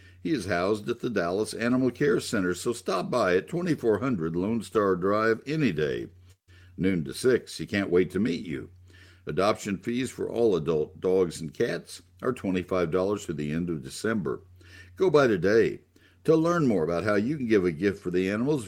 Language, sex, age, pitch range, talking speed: English, male, 60-79, 90-105 Hz, 195 wpm